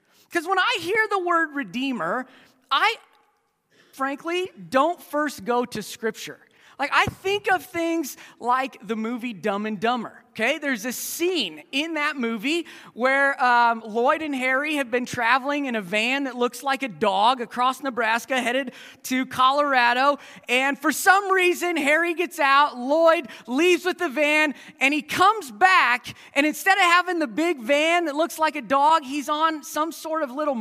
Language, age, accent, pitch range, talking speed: English, 30-49, American, 255-350 Hz, 170 wpm